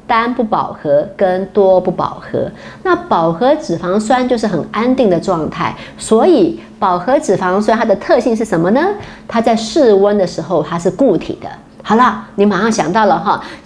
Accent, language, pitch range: American, Chinese, 185-255 Hz